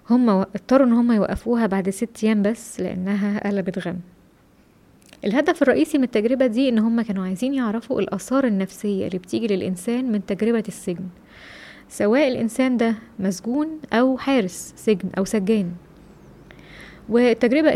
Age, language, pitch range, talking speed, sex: 20-39, English, 195-235 Hz, 135 wpm, female